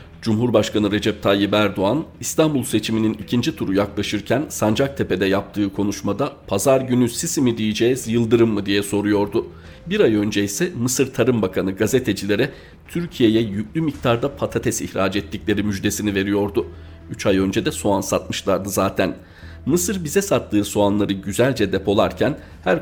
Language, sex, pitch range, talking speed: Turkish, male, 100-125 Hz, 135 wpm